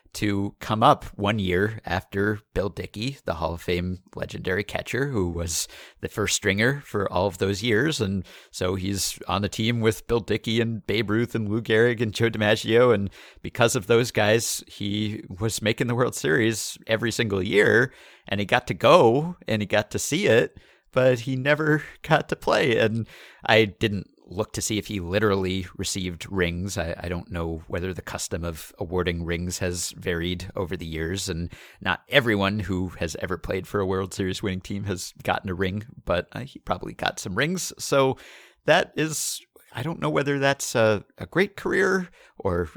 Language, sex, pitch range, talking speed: English, male, 95-120 Hz, 190 wpm